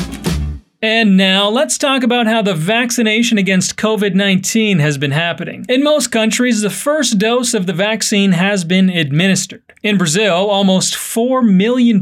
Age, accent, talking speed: 30-49, American, 150 wpm